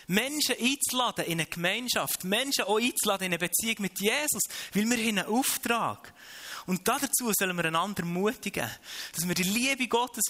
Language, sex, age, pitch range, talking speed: German, male, 20-39, 145-210 Hz, 165 wpm